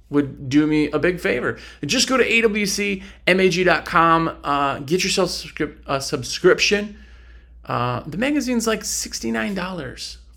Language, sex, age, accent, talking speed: English, male, 30-49, American, 115 wpm